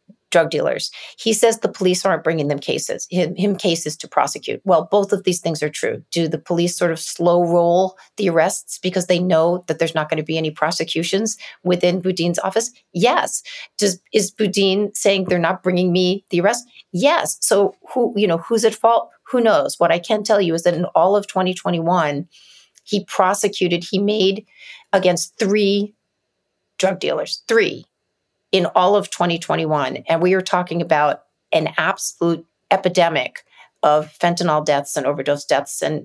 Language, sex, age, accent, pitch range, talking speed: English, female, 40-59, American, 160-195 Hz, 175 wpm